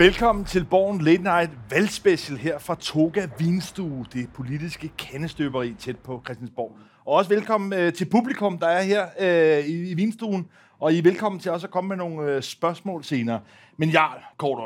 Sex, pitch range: male, 140-180 Hz